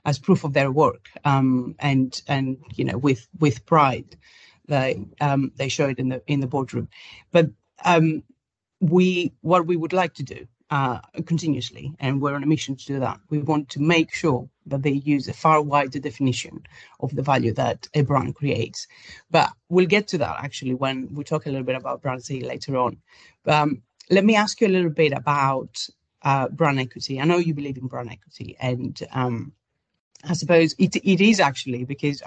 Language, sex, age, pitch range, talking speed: English, female, 30-49, 130-155 Hz, 200 wpm